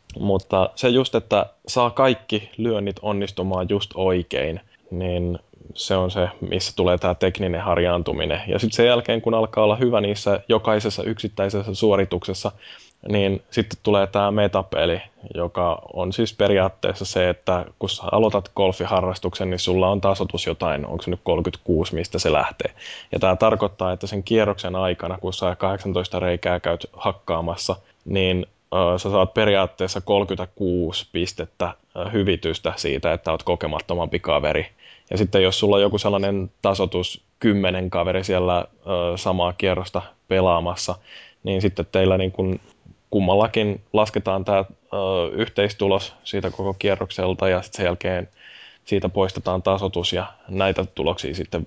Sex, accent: male, native